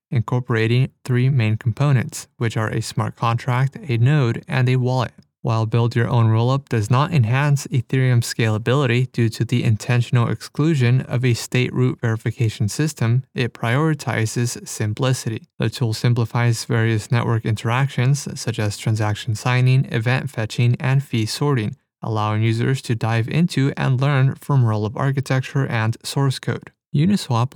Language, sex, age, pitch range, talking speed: English, male, 20-39, 115-135 Hz, 145 wpm